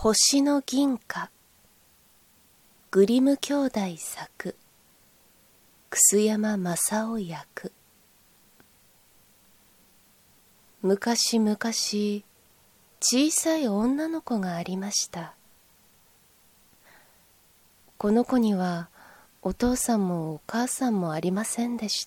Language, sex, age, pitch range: Japanese, female, 20-39, 190-240 Hz